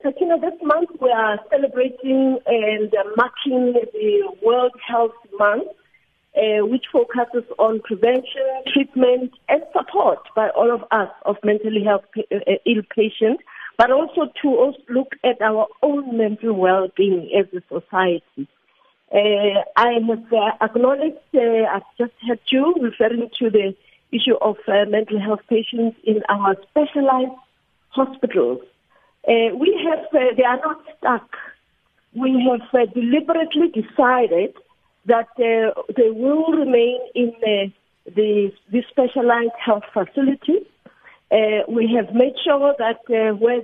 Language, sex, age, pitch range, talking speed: English, female, 40-59, 215-265 Hz, 135 wpm